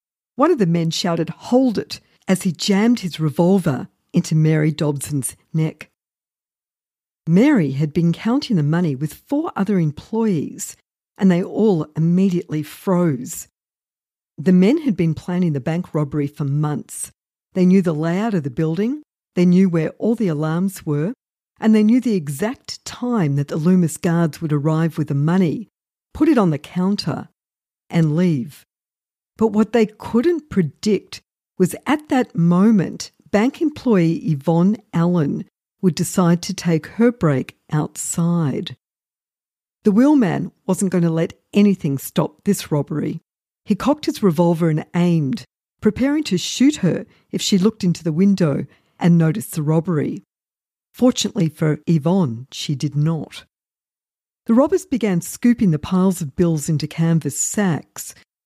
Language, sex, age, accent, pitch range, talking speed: English, female, 50-69, Australian, 160-210 Hz, 150 wpm